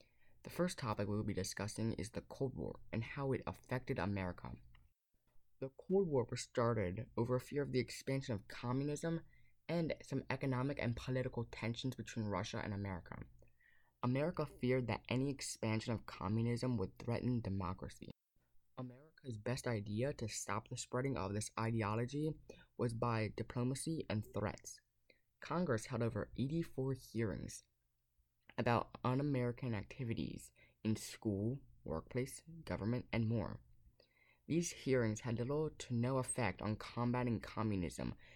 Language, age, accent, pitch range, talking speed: English, 20-39, American, 105-125 Hz, 140 wpm